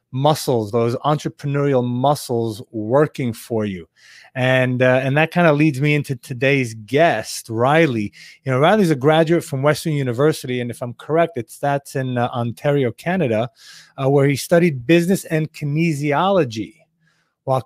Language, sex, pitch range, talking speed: English, male, 130-165 Hz, 155 wpm